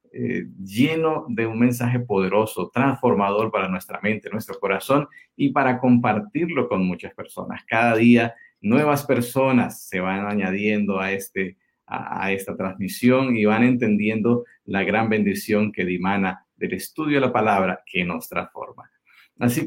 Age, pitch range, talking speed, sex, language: 50-69, 105-135 Hz, 145 wpm, male, Spanish